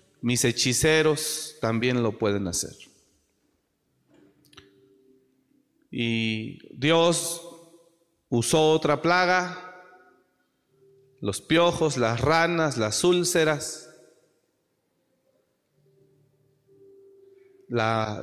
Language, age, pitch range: Spanish, 40-59, 130-175 Hz